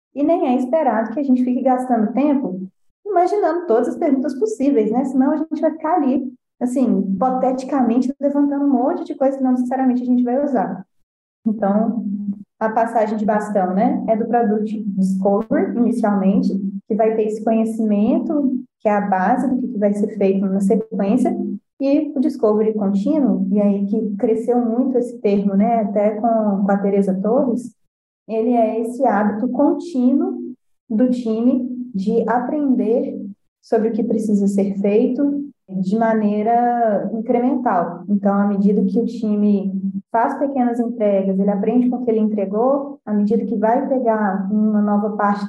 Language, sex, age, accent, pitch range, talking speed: Portuguese, female, 20-39, Brazilian, 205-255 Hz, 160 wpm